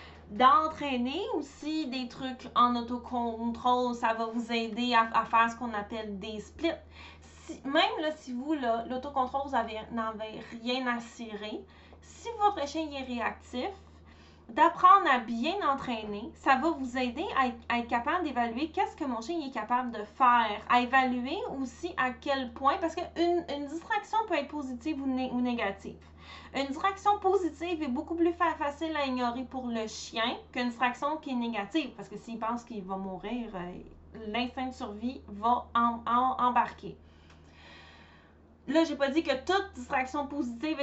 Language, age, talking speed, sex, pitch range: French, 20-39, 170 wpm, female, 230-300 Hz